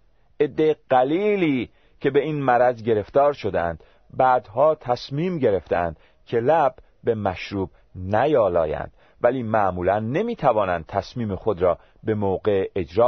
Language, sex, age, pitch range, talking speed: Persian, male, 40-59, 95-140 Hz, 115 wpm